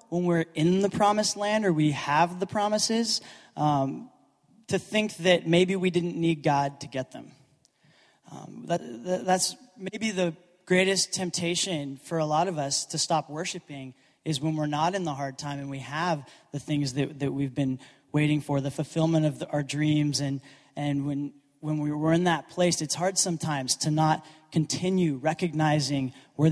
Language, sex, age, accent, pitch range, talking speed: English, male, 20-39, American, 145-175 Hz, 180 wpm